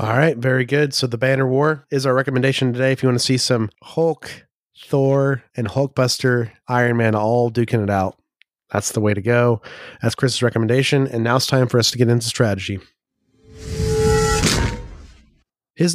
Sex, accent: male, American